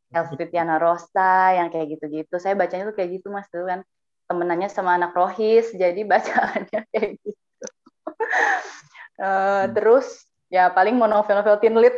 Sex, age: female, 20-39